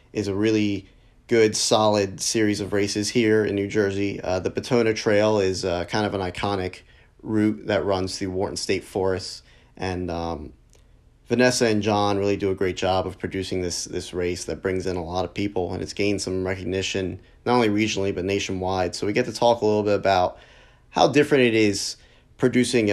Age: 30-49